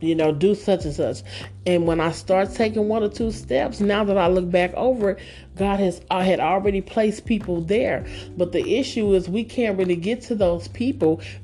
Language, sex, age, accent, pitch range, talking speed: English, male, 40-59, American, 155-195 Hz, 215 wpm